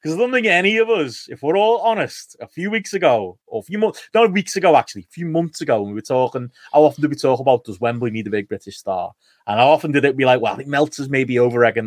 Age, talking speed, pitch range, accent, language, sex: 30-49, 290 wpm, 115-160 Hz, British, English, male